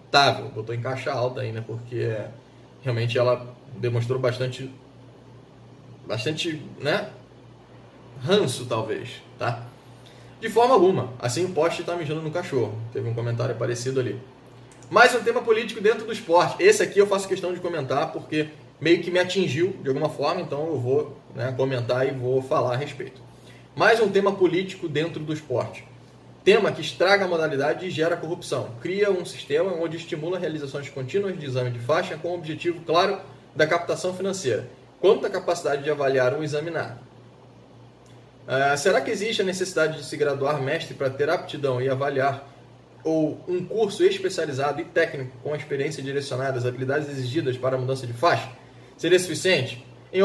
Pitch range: 130-180 Hz